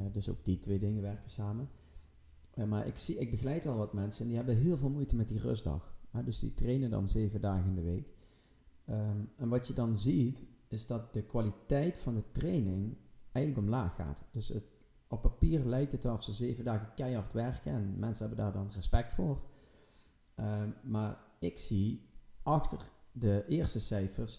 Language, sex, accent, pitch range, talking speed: English, male, Dutch, 100-125 Hz, 180 wpm